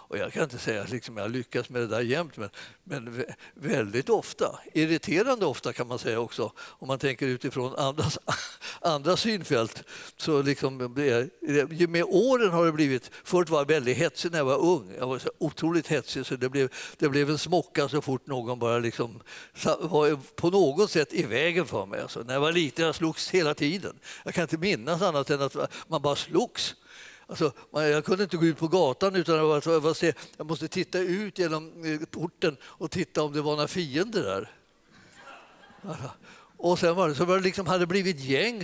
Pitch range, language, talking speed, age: 150-190 Hz, Swedish, 210 wpm, 60-79